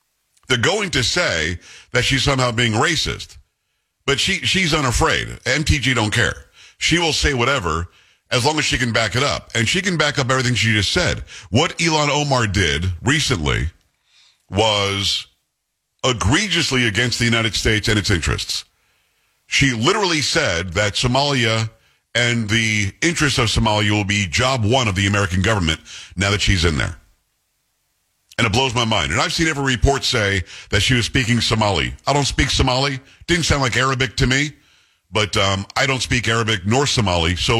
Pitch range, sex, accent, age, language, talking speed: 100-130 Hz, male, American, 50-69, English, 170 wpm